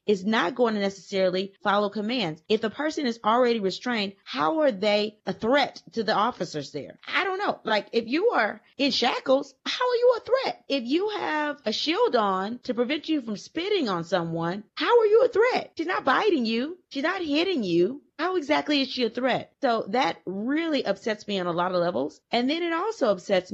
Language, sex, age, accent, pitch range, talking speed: English, female, 30-49, American, 175-250 Hz, 210 wpm